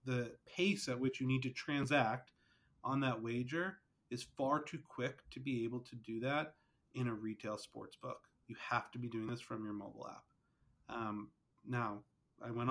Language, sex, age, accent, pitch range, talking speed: English, male, 30-49, American, 115-130 Hz, 190 wpm